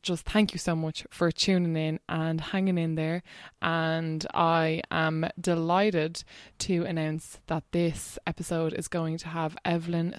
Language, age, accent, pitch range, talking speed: English, 20-39, Irish, 165-200 Hz, 155 wpm